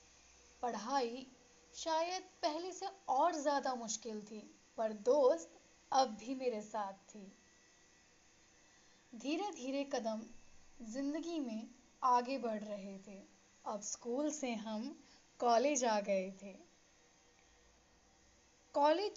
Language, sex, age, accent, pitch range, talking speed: Hindi, female, 10-29, native, 215-280 Hz, 105 wpm